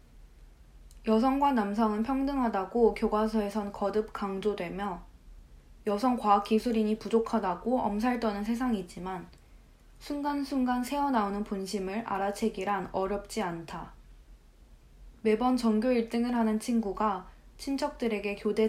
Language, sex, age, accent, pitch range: Korean, female, 20-39, native, 195-230 Hz